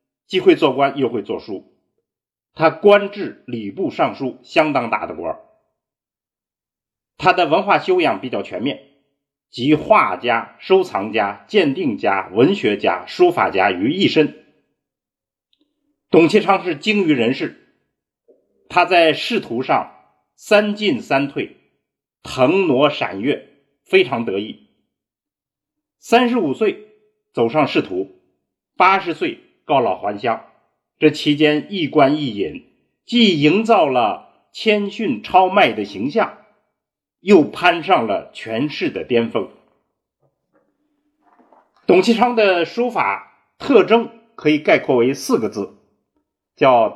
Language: Chinese